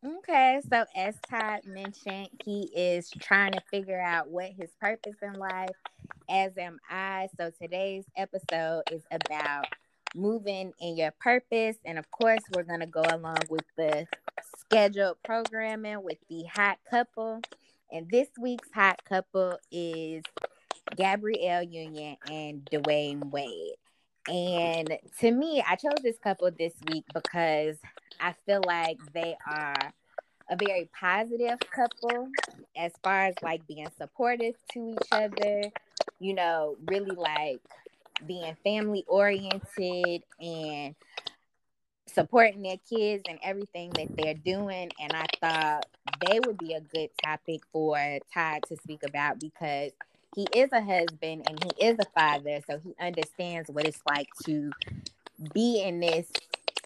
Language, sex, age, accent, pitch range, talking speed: English, female, 20-39, American, 160-210 Hz, 140 wpm